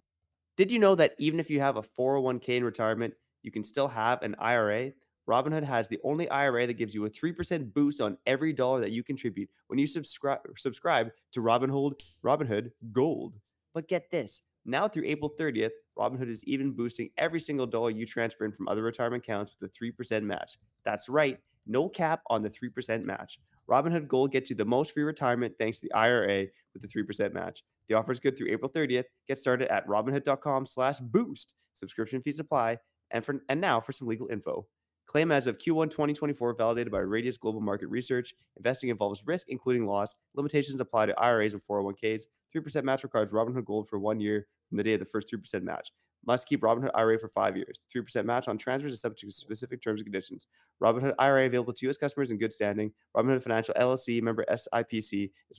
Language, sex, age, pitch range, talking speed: English, male, 20-39, 110-140 Hz, 200 wpm